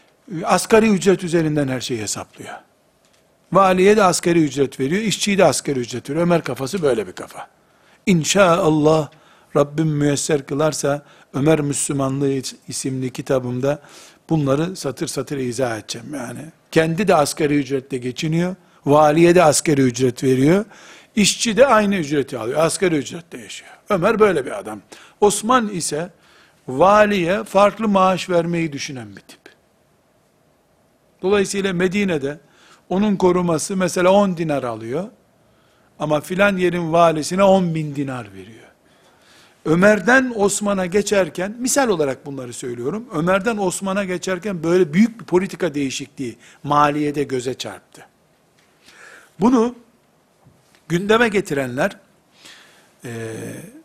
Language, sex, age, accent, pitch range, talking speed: Turkish, male, 60-79, native, 140-195 Hz, 115 wpm